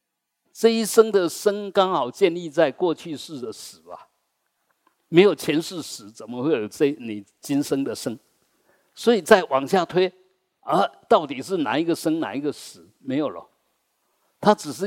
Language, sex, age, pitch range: Chinese, male, 50-69, 145-205 Hz